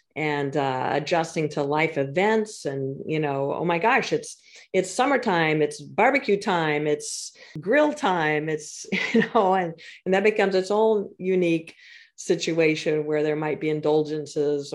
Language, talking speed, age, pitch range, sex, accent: English, 150 wpm, 40-59, 150-195 Hz, female, American